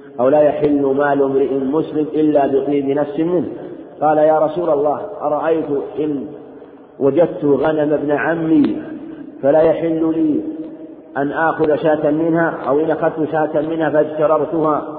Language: Arabic